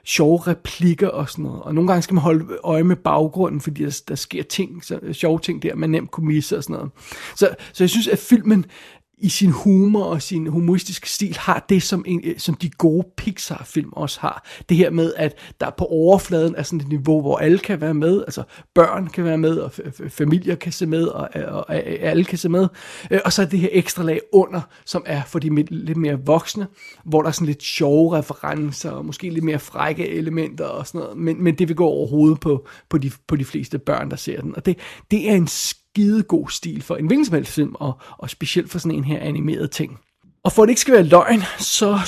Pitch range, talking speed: 155-185 Hz, 235 wpm